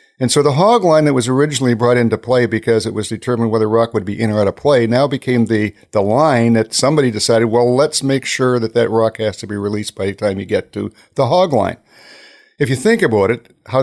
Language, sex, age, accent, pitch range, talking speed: English, male, 60-79, American, 110-135 Hz, 250 wpm